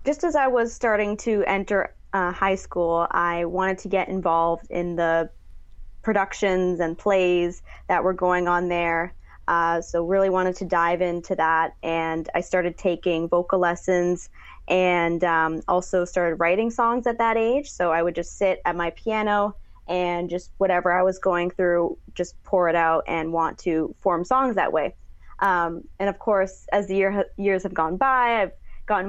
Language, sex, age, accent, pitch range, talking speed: English, female, 20-39, American, 170-195 Hz, 175 wpm